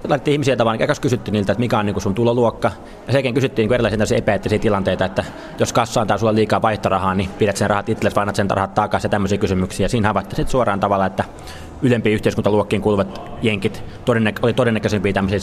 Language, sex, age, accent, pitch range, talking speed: Finnish, male, 20-39, native, 100-120 Hz, 190 wpm